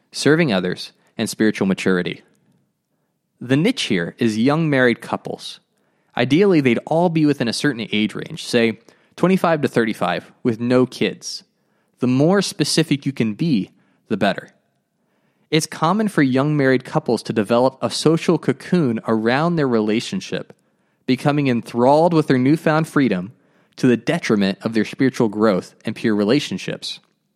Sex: male